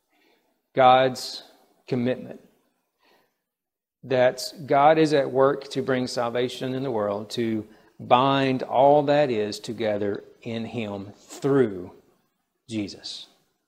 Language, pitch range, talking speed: Bengali, 110-130 Hz, 100 wpm